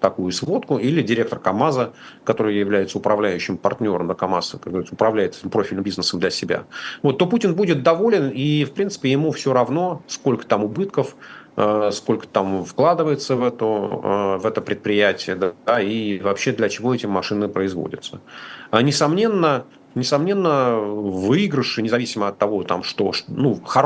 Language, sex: Russian, male